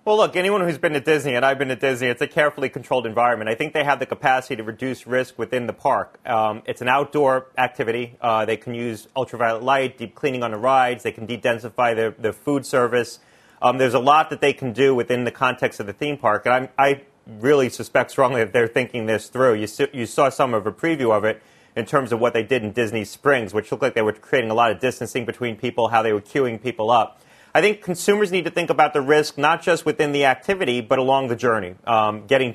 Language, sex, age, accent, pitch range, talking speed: English, male, 30-49, American, 120-145 Hz, 250 wpm